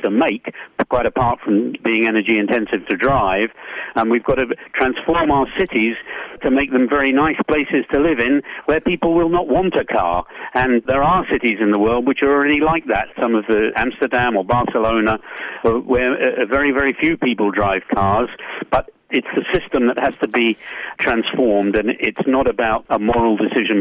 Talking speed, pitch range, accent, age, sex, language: 185 wpm, 110-135 Hz, British, 50-69, male, English